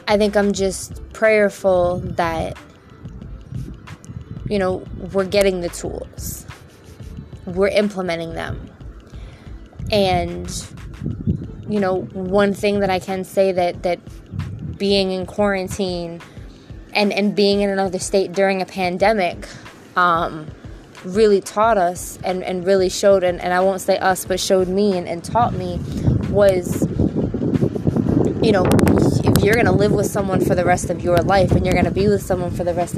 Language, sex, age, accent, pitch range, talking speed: English, female, 20-39, American, 180-200 Hz, 150 wpm